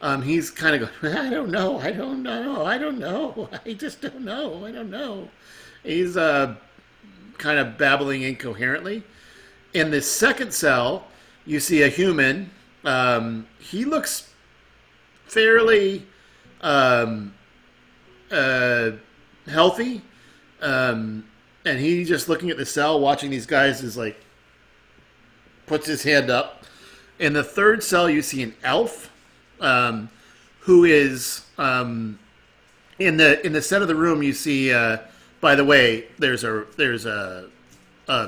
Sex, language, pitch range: male, English, 120-170 Hz